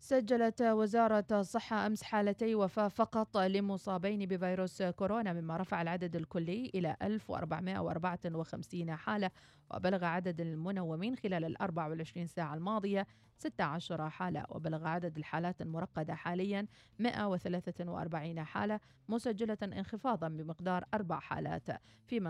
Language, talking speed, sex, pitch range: Arabic, 110 wpm, female, 165-205 Hz